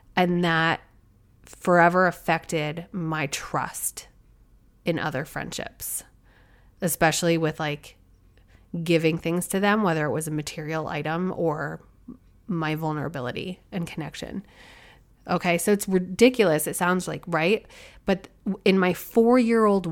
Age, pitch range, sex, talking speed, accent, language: 30-49, 160-185 Hz, female, 120 wpm, American, English